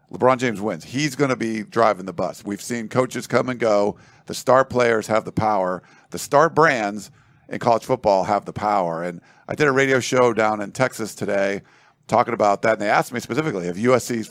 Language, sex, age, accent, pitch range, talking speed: English, male, 50-69, American, 105-130 Hz, 215 wpm